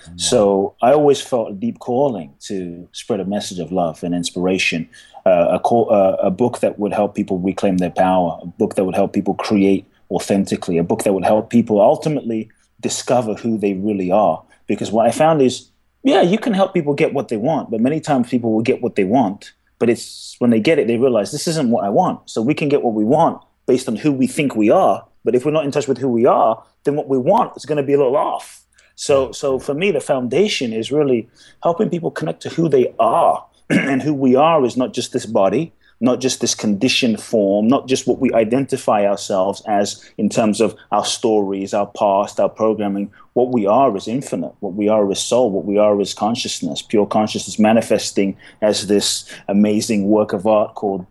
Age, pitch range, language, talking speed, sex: 30-49, 105-145 Hz, English, 220 wpm, male